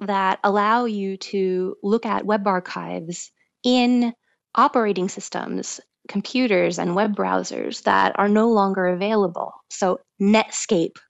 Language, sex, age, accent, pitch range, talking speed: English, female, 20-39, American, 185-230 Hz, 120 wpm